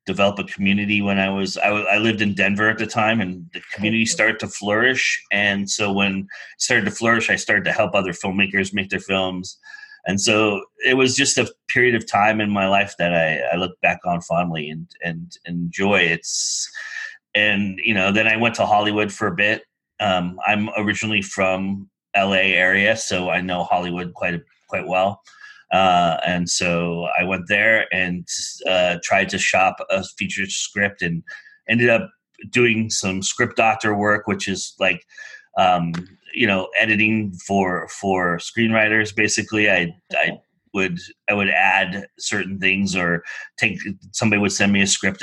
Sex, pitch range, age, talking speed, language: male, 90-110 Hz, 30-49, 175 wpm, English